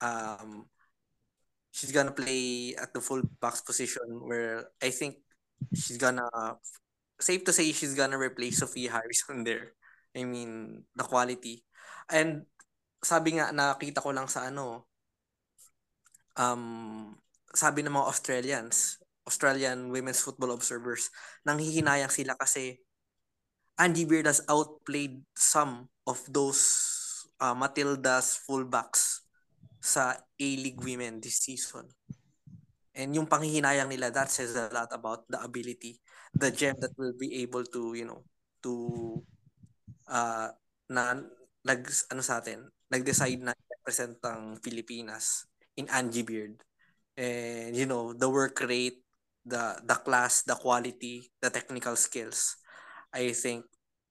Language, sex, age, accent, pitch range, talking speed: Filipino, male, 20-39, native, 120-140 Hz, 125 wpm